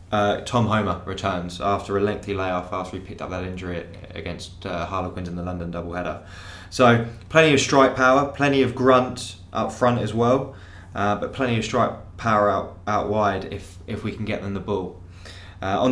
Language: English